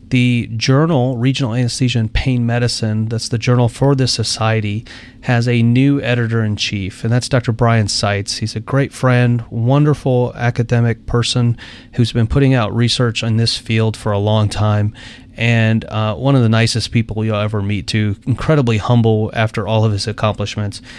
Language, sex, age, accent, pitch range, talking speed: English, male, 30-49, American, 115-130 Hz, 175 wpm